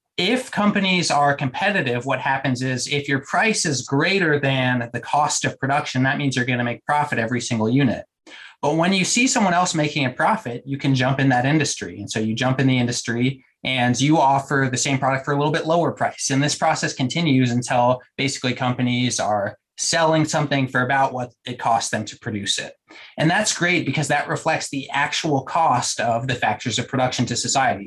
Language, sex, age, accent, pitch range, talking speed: English, male, 20-39, American, 125-155 Hz, 205 wpm